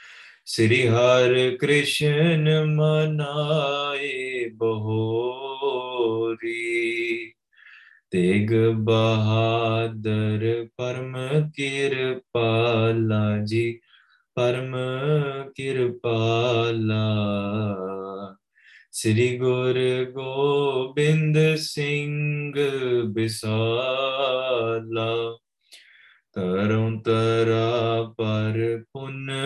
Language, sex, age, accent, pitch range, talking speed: English, male, 20-39, Indian, 115-140 Hz, 35 wpm